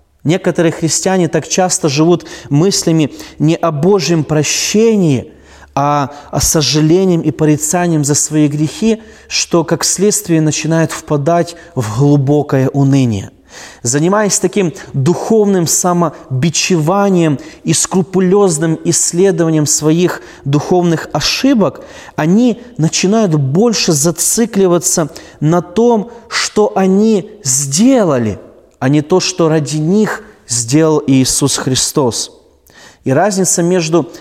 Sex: male